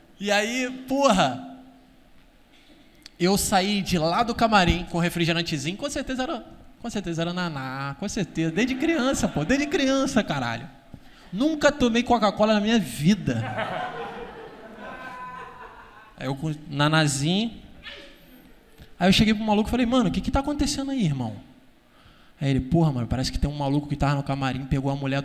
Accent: Brazilian